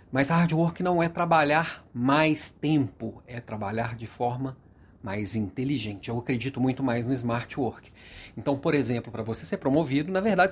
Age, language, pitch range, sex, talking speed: 40-59, Portuguese, 120-170 Hz, male, 170 wpm